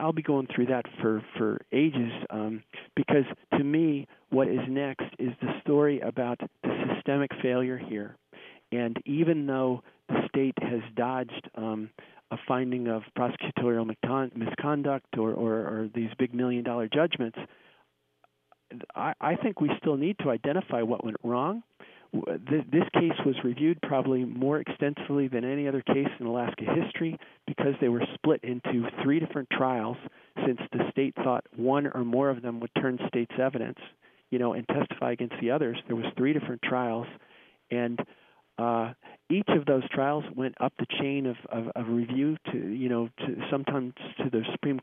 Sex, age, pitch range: male, 40-59, 120-145 Hz